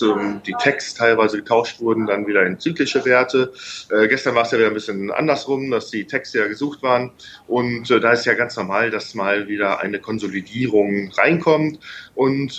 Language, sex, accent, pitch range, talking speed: German, male, German, 115-135 Hz, 185 wpm